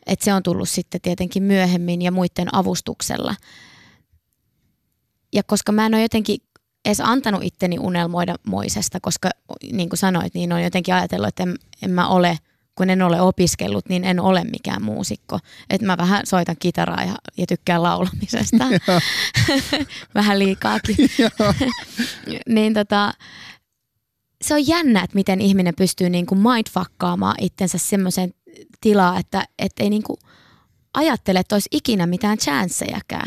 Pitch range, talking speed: 180-210 Hz, 135 wpm